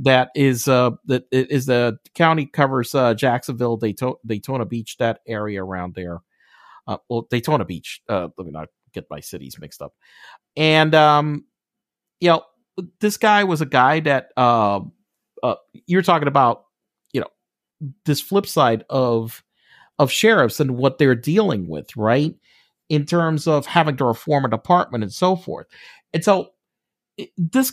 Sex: male